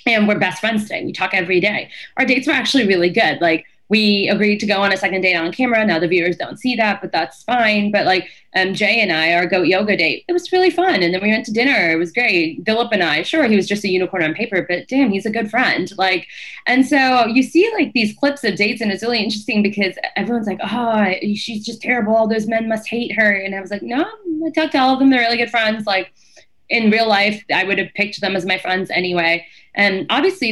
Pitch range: 185-255 Hz